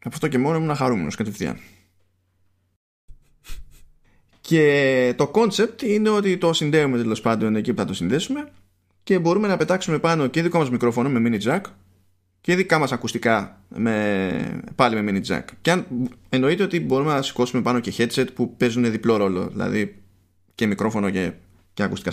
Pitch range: 95-140 Hz